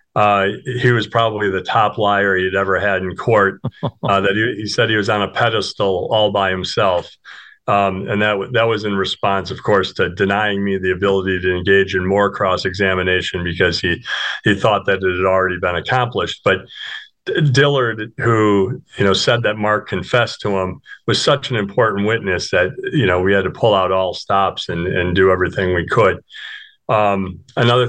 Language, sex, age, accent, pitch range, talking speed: English, male, 40-59, American, 95-110 Hz, 190 wpm